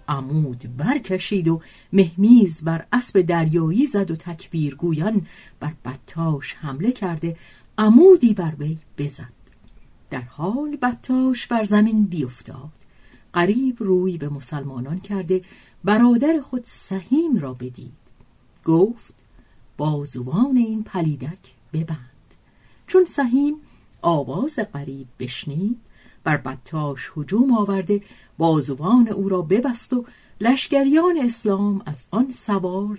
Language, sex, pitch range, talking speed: Persian, female, 145-230 Hz, 110 wpm